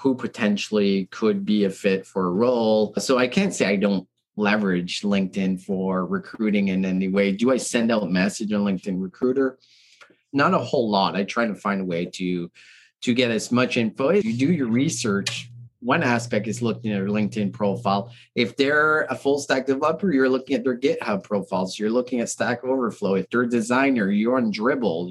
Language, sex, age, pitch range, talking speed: English, male, 30-49, 100-130 Hz, 200 wpm